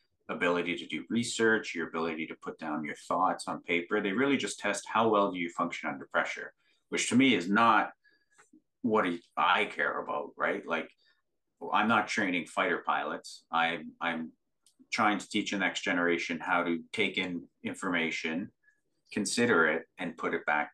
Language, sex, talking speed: English, male, 170 wpm